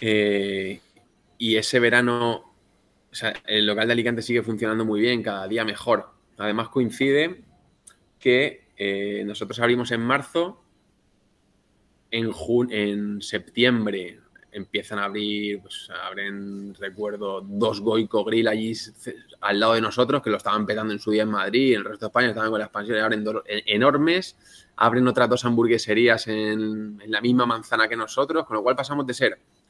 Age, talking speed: 20-39, 170 wpm